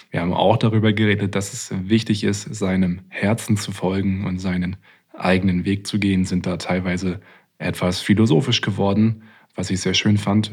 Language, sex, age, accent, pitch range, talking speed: German, male, 20-39, German, 95-110 Hz, 170 wpm